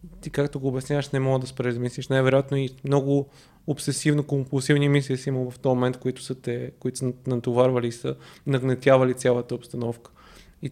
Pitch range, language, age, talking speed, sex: 125-150 Hz, Bulgarian, 20-39, 160 wpm, male